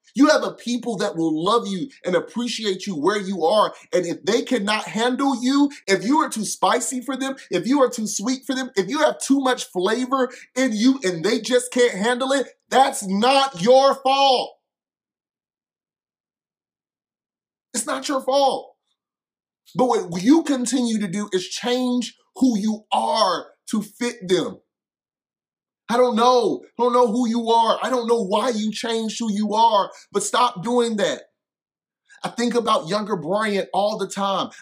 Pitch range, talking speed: 205-250 Hz, 175 wpm